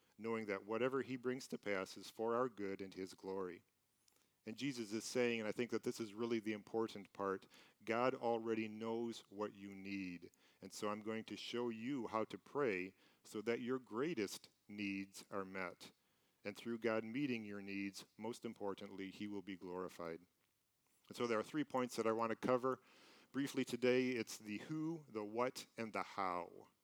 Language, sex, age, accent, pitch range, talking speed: English, male, 40-59, American, 100-120 Hz, 190 wpm